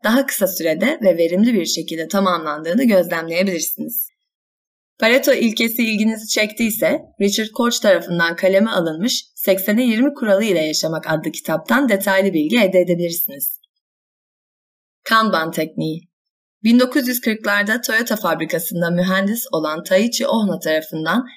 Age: 30-49